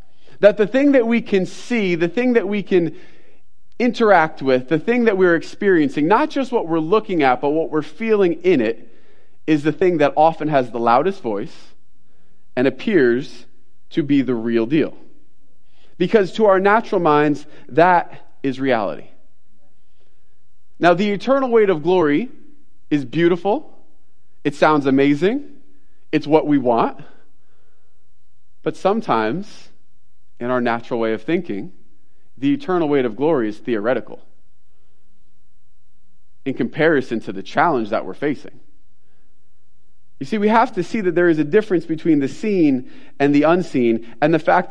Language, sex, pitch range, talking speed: English, male, 130-205 Hz, 150 wpm